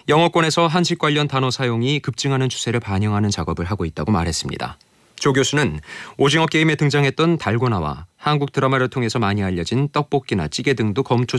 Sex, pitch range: male, 110-150 Hz